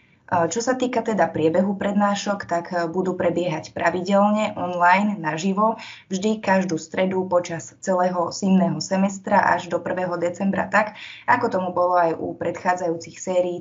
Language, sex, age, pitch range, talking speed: Slovak, female, 20-39, 180-195 Hz, 135 wpm